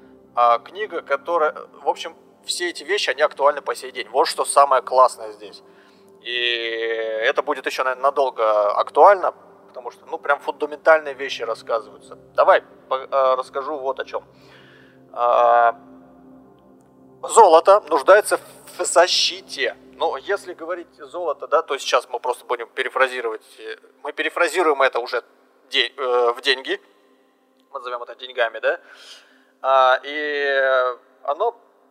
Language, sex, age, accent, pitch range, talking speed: Russian, male, 30-49, native, 115-165 Hz, 120 wpm